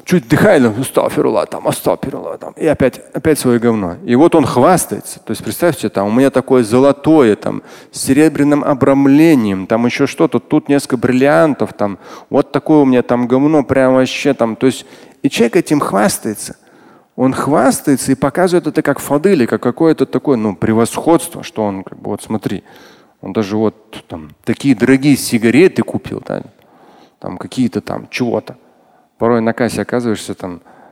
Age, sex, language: 30-49, male, Russian